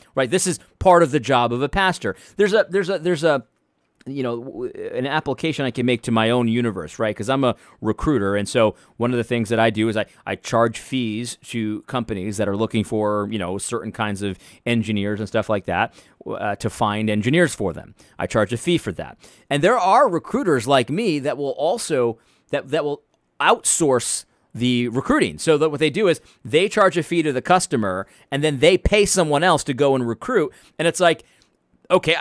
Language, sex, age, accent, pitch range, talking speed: English, male, 30-49, American, 115-170 Hz, 220 wpm